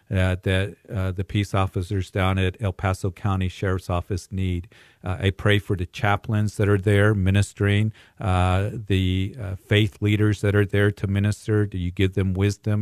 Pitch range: 95-110 Hz